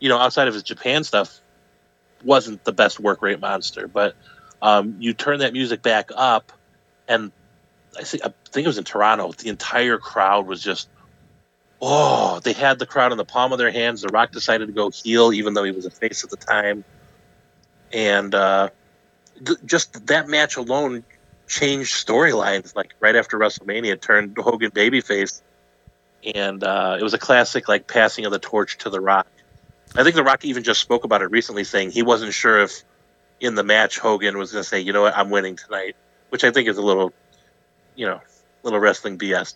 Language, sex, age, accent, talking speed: English, male, 30-49, American, 195 wpm